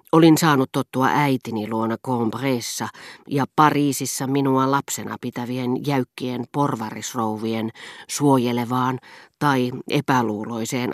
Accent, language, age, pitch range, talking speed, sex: native, Finnish, 40-59, 120-155 Hz, 90 wpm, female